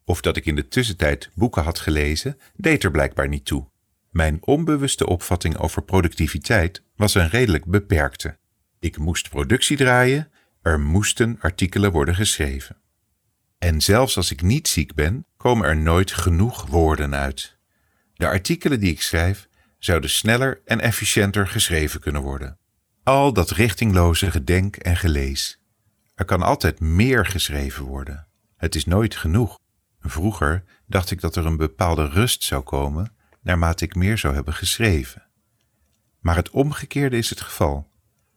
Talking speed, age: 150 wpm, 50-69